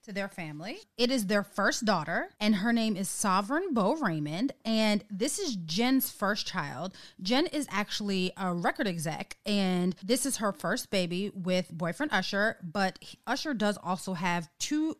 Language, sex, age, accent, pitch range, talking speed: English, female, 30-49, American, 185-240 Hz, 170 wpm